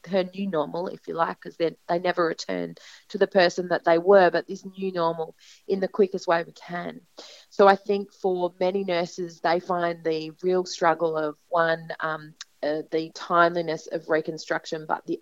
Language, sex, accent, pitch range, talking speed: English, female, Australian, 165-185 Hz, 185 wpm